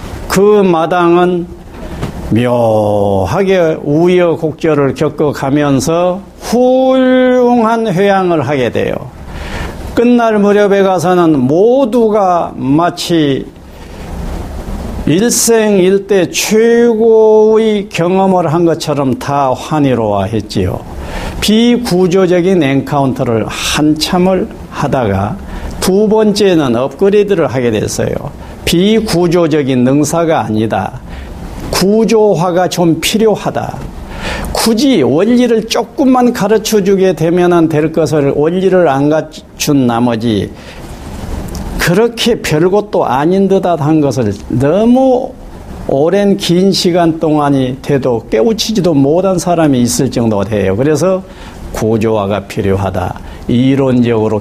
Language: Korean